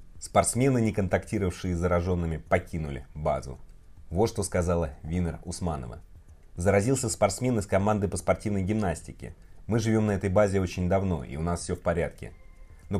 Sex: male